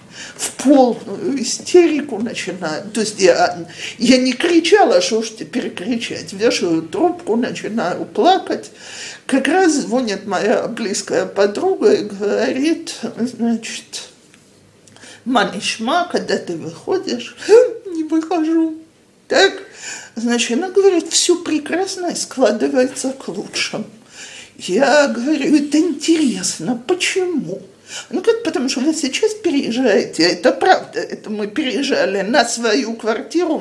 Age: 50-69